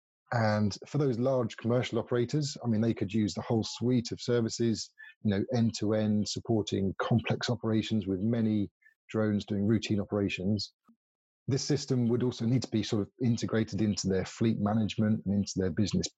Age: 30-49